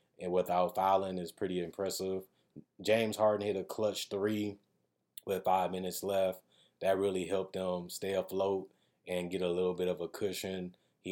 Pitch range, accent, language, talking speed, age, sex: 90-95 Hz, American, English, 165 wpm, 20-39, male